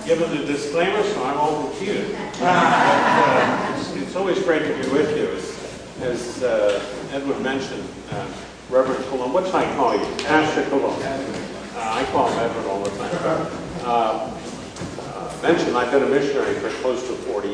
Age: 50-69